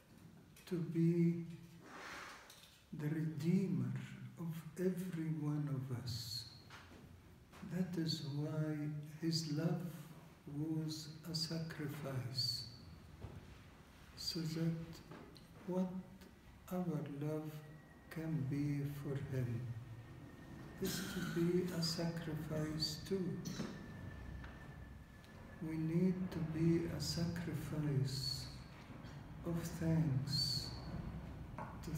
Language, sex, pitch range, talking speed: English, male, 115-165 Hz, 75 wpm